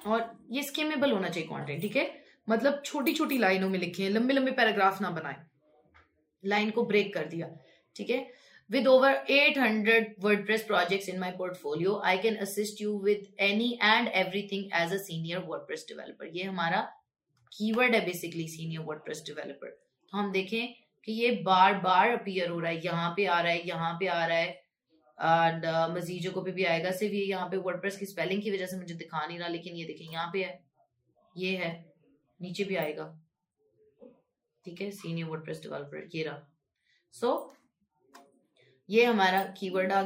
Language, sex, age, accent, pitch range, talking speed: English, female, 20-39, Indian, 170-220 Hz, 165 wpm